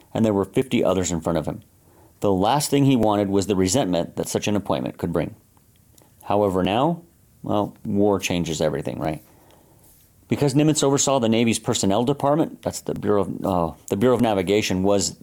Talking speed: 175 wpm